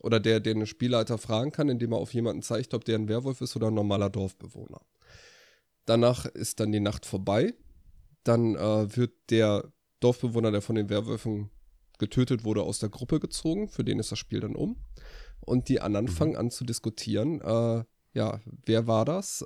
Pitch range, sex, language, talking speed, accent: 105-125 Hz, male, German, 185 wpm, German